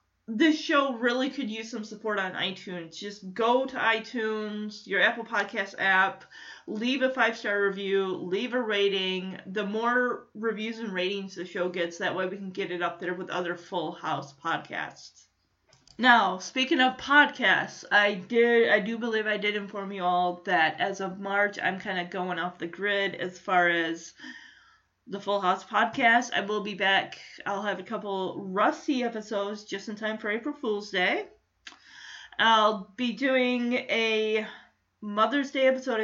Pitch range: 185-230 Hz